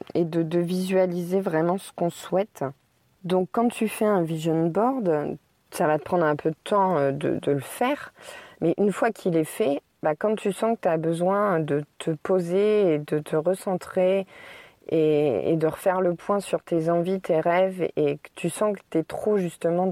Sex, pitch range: female, 160-195 Hz